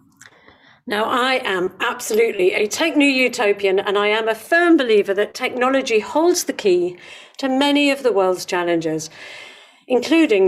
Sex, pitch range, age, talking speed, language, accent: female, 190-255 Hz, 50-69, 150 wpm, English, British